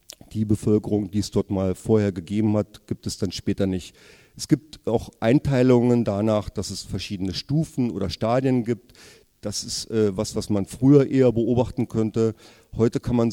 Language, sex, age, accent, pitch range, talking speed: German, male, 40-59, German, 105-120 Hz, 175 wpm